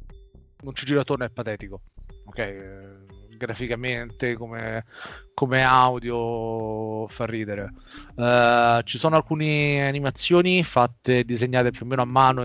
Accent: native